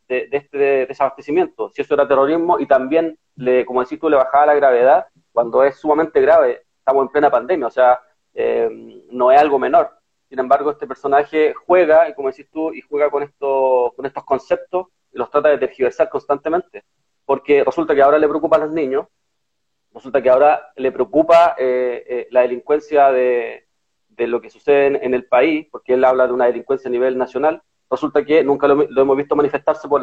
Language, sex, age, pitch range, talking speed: Spanish, male, 30-49, 135-165 Hz, 200 wpm